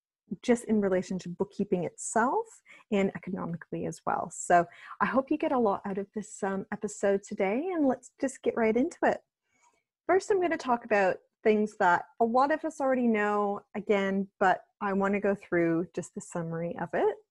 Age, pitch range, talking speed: 30-49, 180-230 Hz, 195 wpm